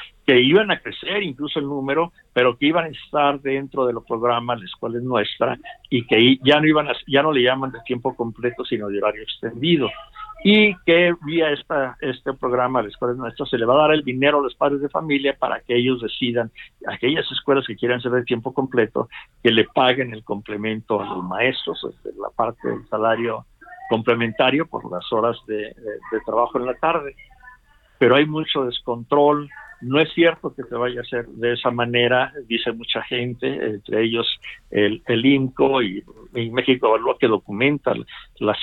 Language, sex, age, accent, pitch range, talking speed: Spanish, male, 60-79, Mexican, 115-140 Hz, 190 wpm